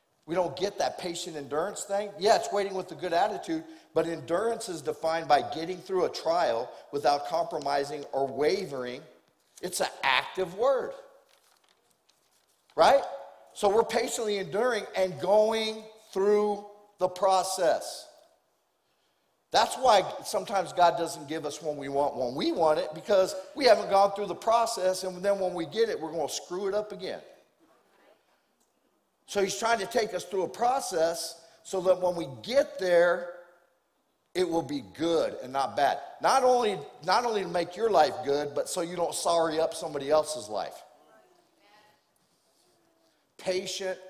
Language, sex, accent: English, male, American